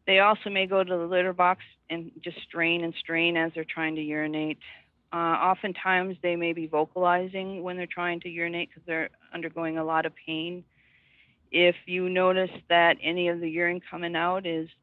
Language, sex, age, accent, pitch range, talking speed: English, female, 50-69, American, 160-180 Hz, 190 wpm